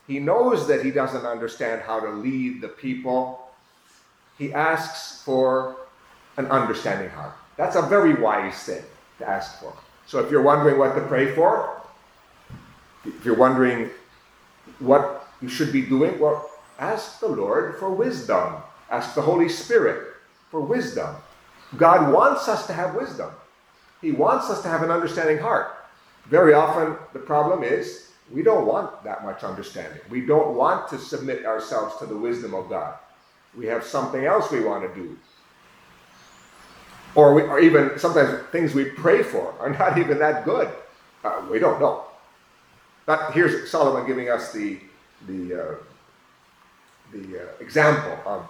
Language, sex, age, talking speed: English, male, 40-59, 155 wpm